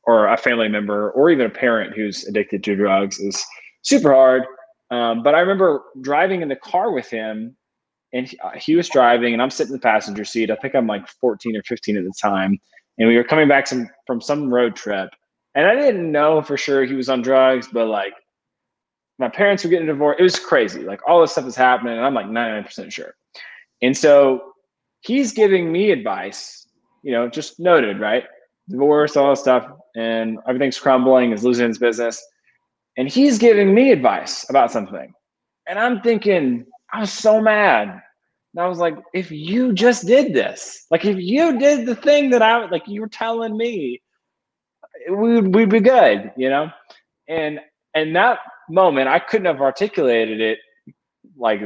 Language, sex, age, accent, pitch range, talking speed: English, male, 20-39, American, 125-205 Hz, 190 wpm